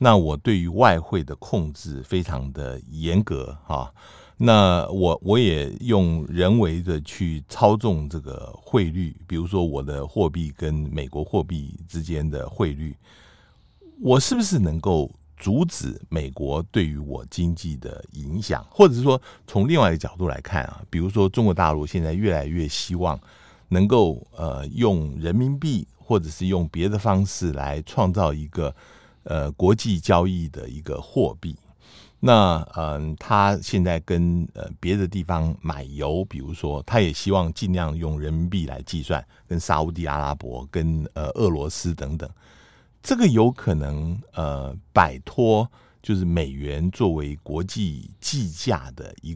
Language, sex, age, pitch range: Chinese, male, 60-79, 75-95 Hz